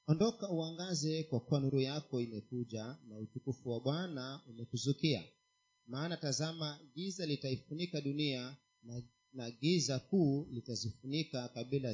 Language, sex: Swahili, male